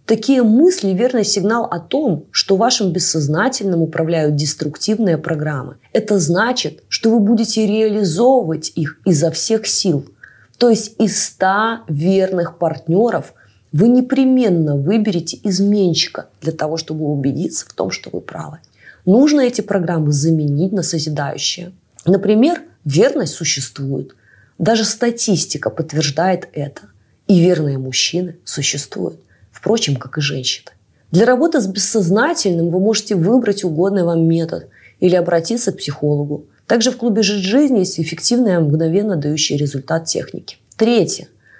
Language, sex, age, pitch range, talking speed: Russian, female, 20-39, 155-215 Hz, 130 wpm